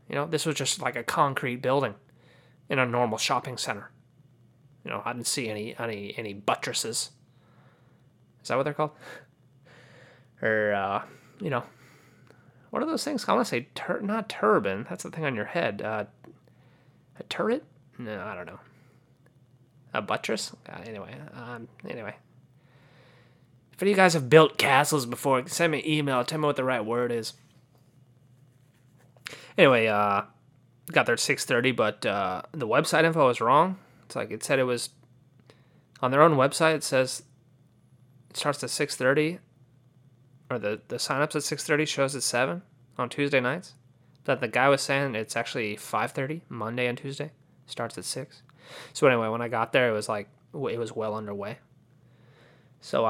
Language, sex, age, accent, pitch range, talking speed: English, male, 30-49, American, 120-140 Hz, 170 wpm